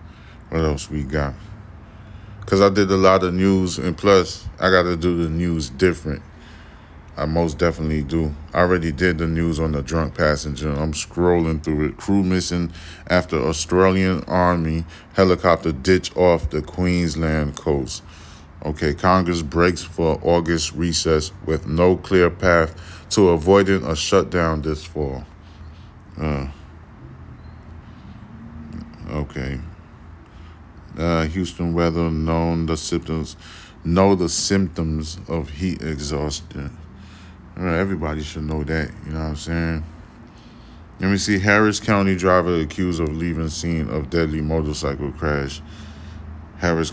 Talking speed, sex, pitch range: 130 wpm, male, 80-90 Hz